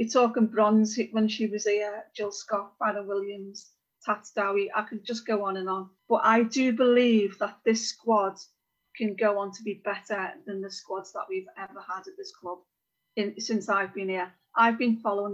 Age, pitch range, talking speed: 40-59, 195-225 Hz, 200 wpm